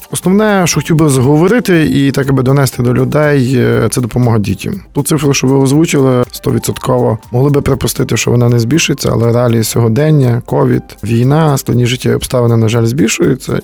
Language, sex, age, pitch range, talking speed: Ukrainian, male, 20-39, 115-145 Hz, 165 wpm